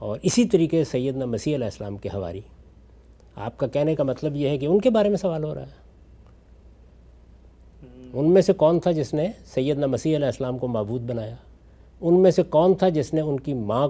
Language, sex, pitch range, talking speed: Urdu, male, 110-175 Hz, 210 wpm